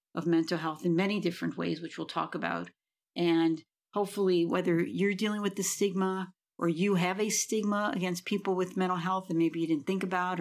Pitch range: 170-195 Hz